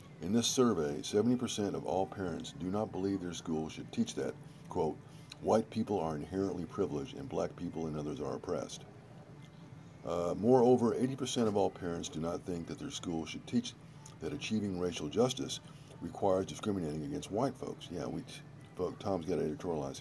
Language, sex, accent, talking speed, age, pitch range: English, male, American, 175 wpm, 50-69, 80-135 Hz